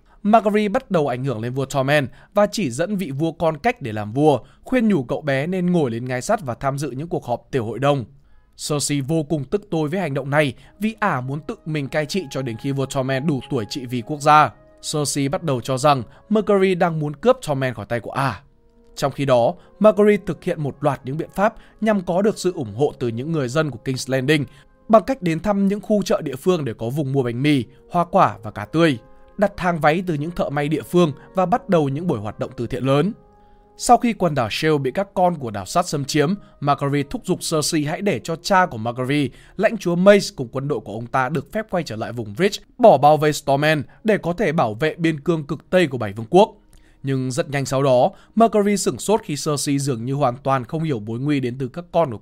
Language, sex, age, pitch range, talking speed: Vietnamese, male, 20-39, 135-185 Hz, 250 wpm